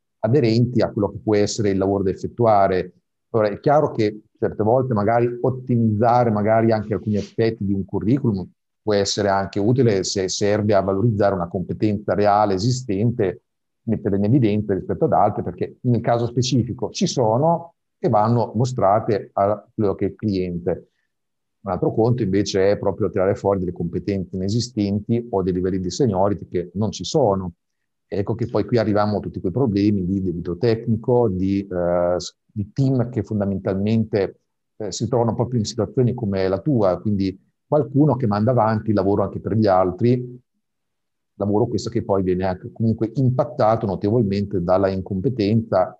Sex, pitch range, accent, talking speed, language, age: male, 95-115 Hz, native, 165 wpm, Italian, 50-69